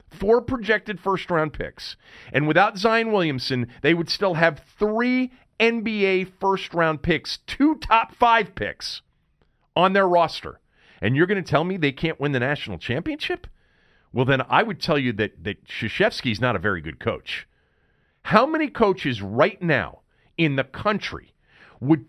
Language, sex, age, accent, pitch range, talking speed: English, male, 40-59, American, 120-195 Hz, 165 wpm